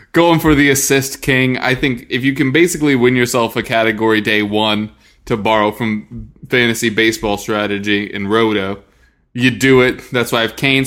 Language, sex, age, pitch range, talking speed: English, male, 20-39, 115-150 Hz, 180 wpm